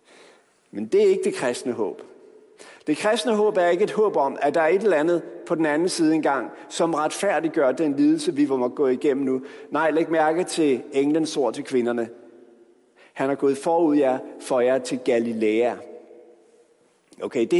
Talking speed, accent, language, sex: 190 wpm, native, Danish, male